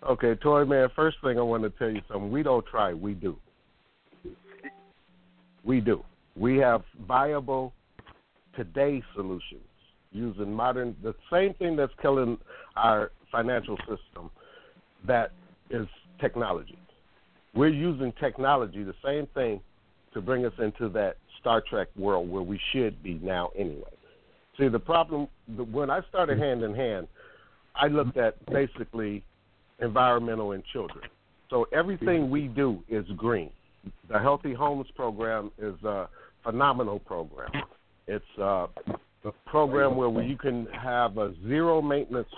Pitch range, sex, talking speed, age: 105-145 Hz, male, 130 wpm, 60-79